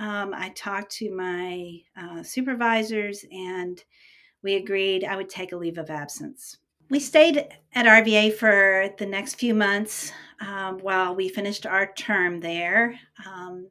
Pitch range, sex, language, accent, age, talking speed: 180-210 Hz, female, English, American, 50-69, 150 wpm